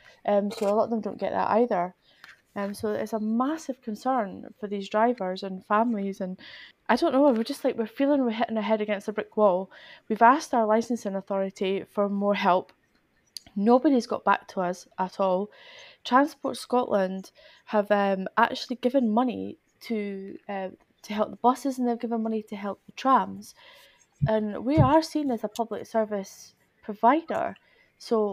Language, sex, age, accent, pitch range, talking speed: English, female, 20-39, British, 205-255 Hz, 180 wpm